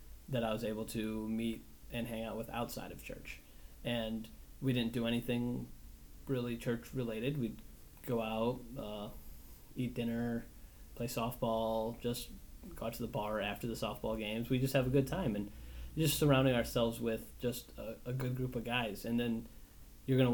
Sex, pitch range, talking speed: male, 110-125 Hz, 175 wpm